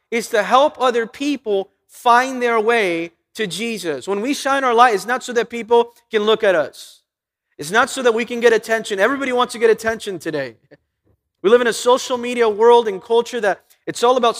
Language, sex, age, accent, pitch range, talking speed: English, male, 30-49, American, 180-245 Hz, 215 wpm